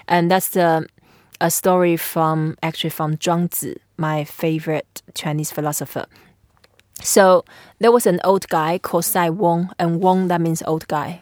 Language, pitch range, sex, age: English, 165-195 Hz, female, 20-39